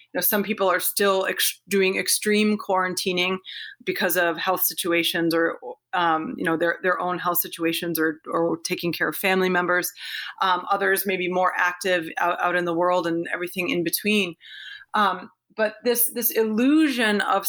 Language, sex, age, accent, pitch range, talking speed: English, female, 30-49, American, 180-210 Hz, 175 wpm